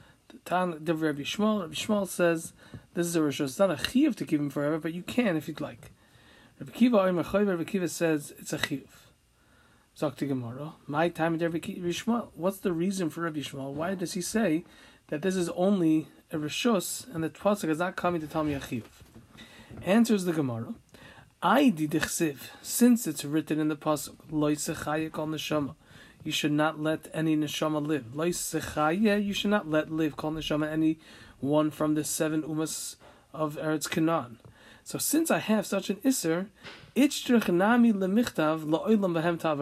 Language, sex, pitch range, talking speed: English, male, 150-195 Hz, 180 wpm